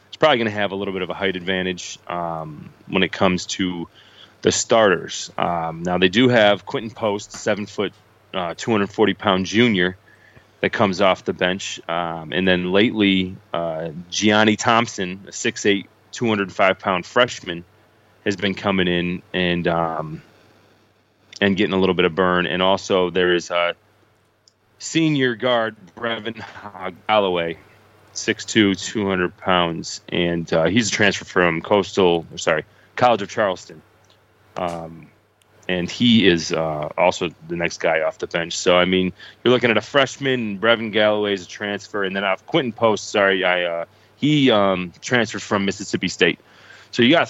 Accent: American